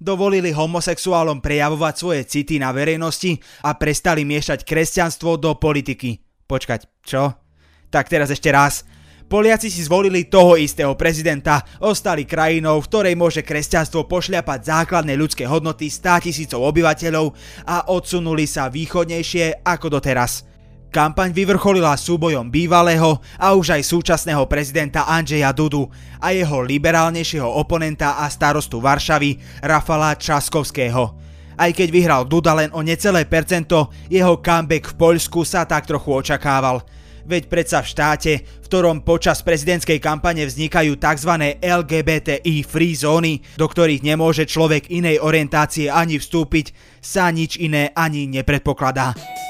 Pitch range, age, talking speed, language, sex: 145-170 Hz, 20-39, 130 wpm, Slovak, male